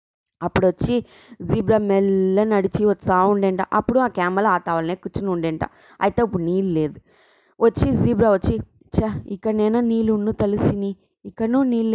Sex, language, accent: female, English, Indian